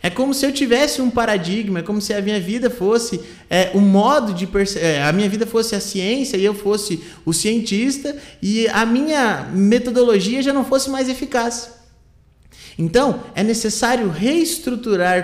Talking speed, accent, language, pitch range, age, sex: 175 wpm, Brazilian, Portuguese, 185-240 Hz, 30-49, male